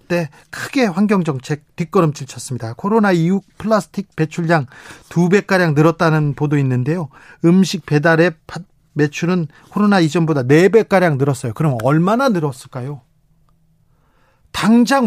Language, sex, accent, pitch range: Korean, male, native, 150-200 Hz